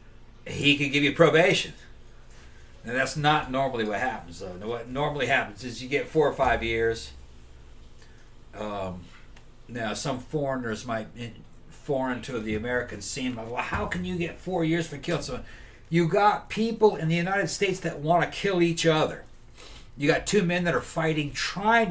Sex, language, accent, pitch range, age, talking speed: male, English, American, 120-180 Hz, 60-79, 175 wpm